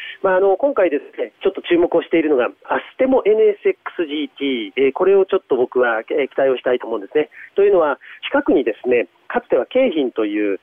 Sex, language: male, Japanese